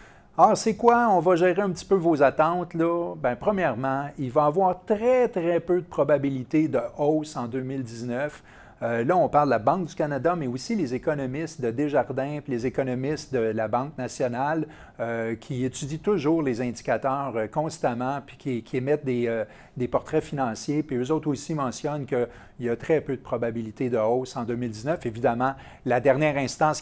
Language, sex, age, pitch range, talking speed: French, male, 40-59, 130-165 Hz, 190 wpm